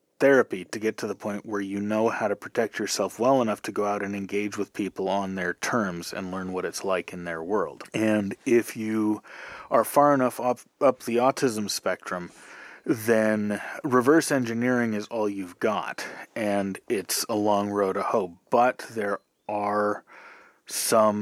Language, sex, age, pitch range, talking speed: English, male, 30-49, 100-125 Hz, 175 wpm